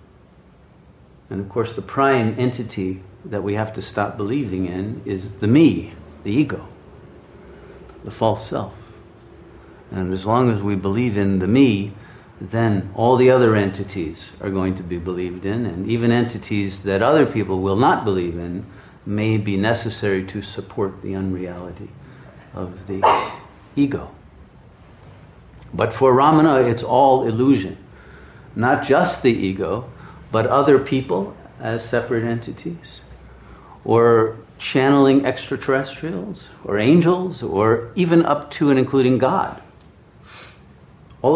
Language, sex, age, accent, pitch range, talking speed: English, male, 50-69, American, 95-120 Hz, 130 wpm